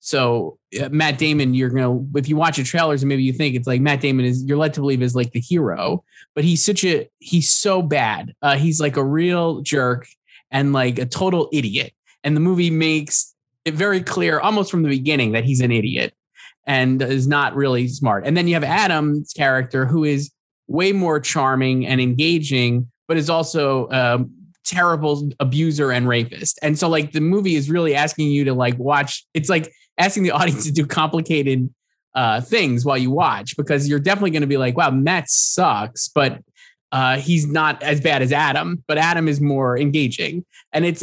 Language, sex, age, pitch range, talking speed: English, male, 20-39, 130-160 Hz, 200 wpm